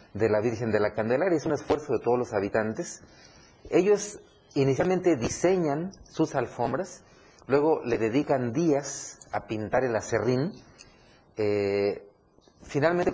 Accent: Mexican